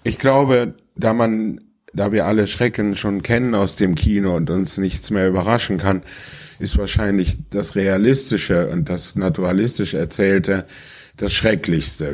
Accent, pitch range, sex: German, 85-100 Hz, male